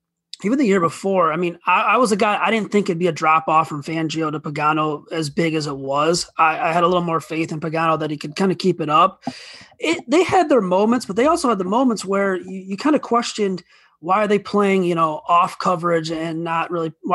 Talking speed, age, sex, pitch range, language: 260 wpm, 20-39, male, 160-190 Hz, English